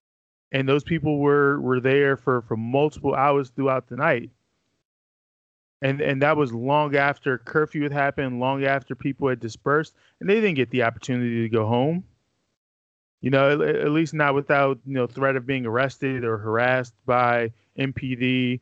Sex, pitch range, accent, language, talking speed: male, 125-165 Hz, American, English, 170 wpm